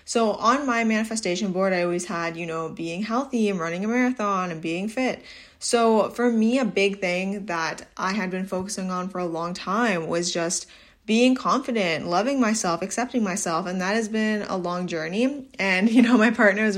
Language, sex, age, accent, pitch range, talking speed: English, female, 10-29, American, 180-230 Hz, 200 wpm